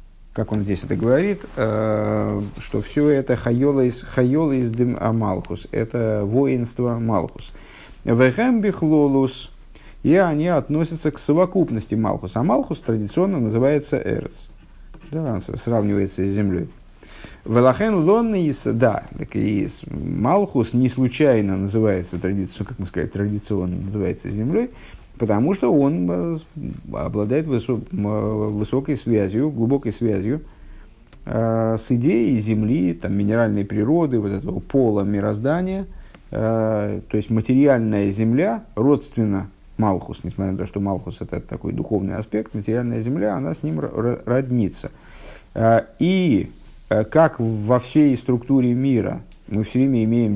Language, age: Russian, 50-69